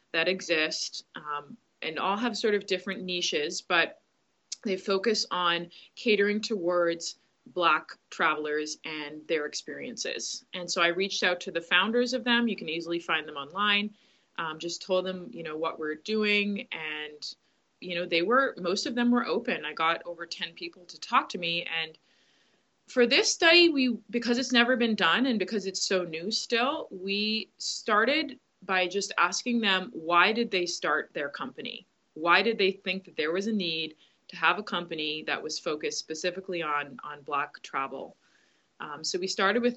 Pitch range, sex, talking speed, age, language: 165-205 Hz, female, 180 wpm, 20-39, English